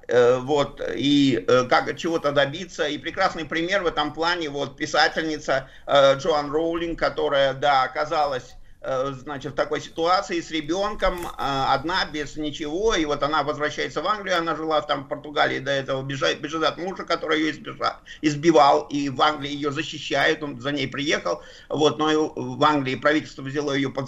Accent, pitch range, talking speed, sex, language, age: native, 145-175 Hz, 170 wpm, male, Russian, 50-69